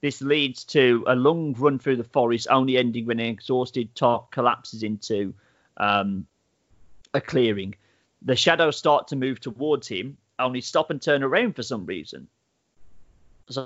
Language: English